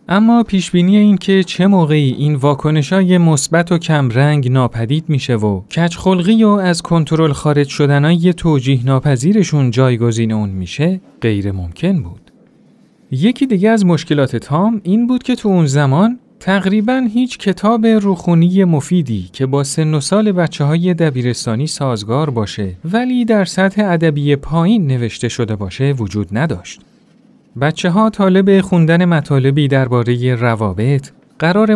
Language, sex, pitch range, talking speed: Persian, male, 130-185 Hz, 135 wpm